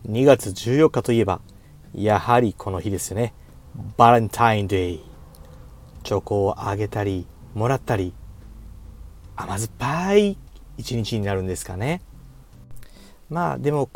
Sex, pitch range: male, 100-160 Hz